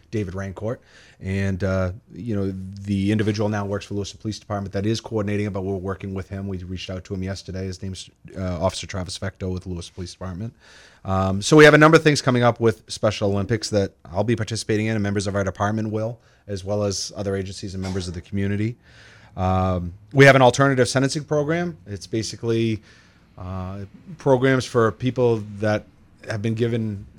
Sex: male